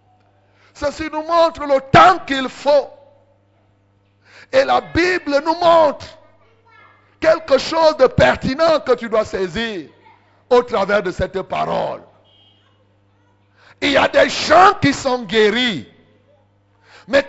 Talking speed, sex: 120 wpm, male